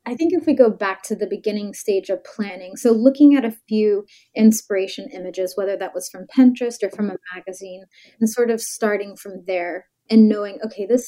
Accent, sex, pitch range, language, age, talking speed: American, female, 190-230 Hz, English, 20-39, 205 wpm